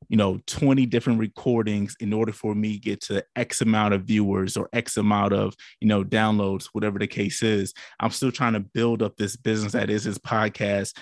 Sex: male